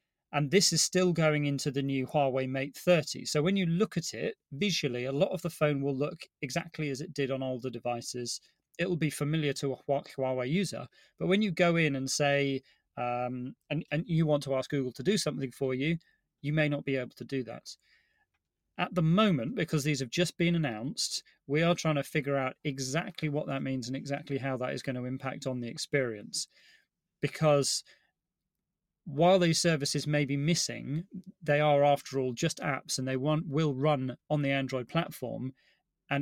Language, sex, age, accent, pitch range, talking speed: English, male, 30-49, British, 130-160 Hz, 200 wpm